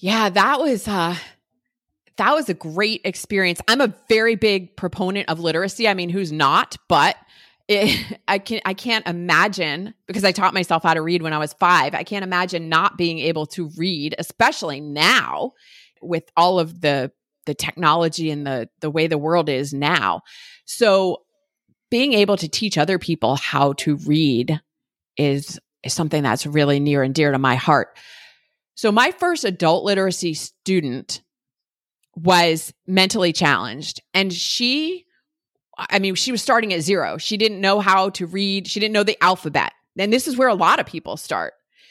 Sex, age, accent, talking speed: female, 30-49, American, 175 wpm